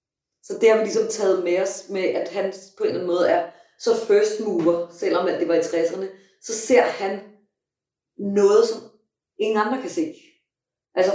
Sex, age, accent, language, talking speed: female, 30-49, native, Danish, 190 wpm